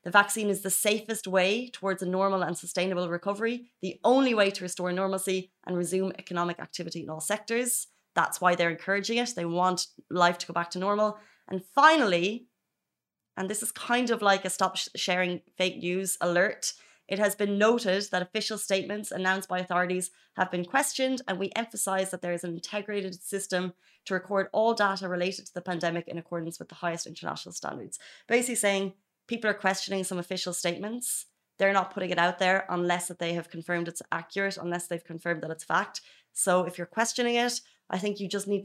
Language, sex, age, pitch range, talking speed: Arabic, female, 30-49, 175-205 Hz, 195 wpm